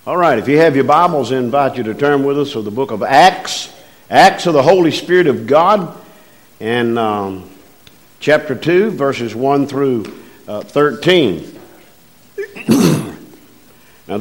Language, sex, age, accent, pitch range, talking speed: English, male, 50-69, American, 125-175 Hz, 150 wpm